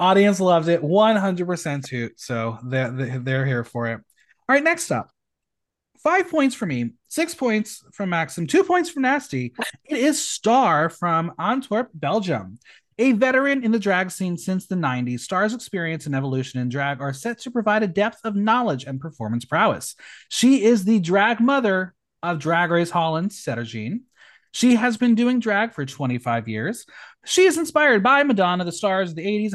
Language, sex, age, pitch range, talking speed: English, male, 30-49, 140-235 Hz, 175 wpm